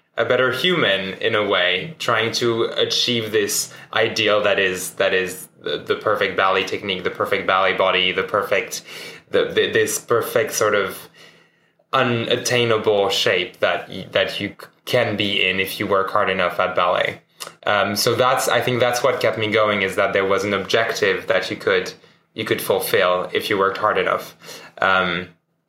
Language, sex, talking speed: English, male, 175 wpm